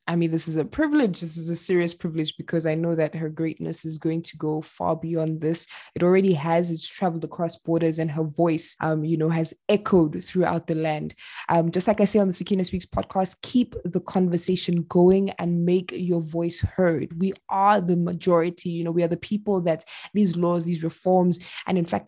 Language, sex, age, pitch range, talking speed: English, female, 20-39, 165-190 Hz, 215 wpm